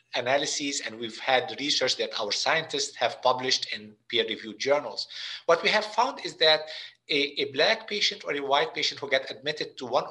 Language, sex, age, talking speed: English, male, 50-69, 190 wpm